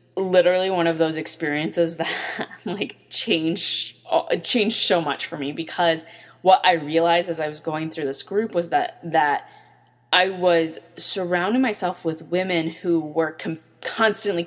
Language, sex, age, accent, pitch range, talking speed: English, female, 20-39, American, 150-180 Hz, 150 wpm